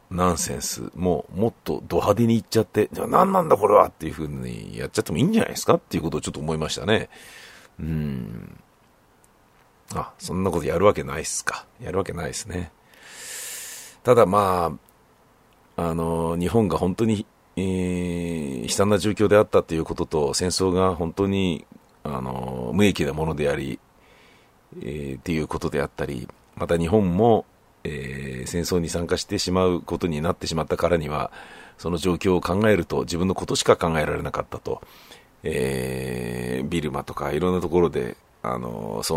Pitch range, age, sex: 75-90 Hz, 50-69, male